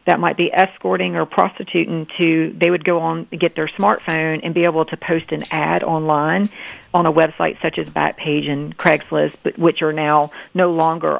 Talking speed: 200 wpm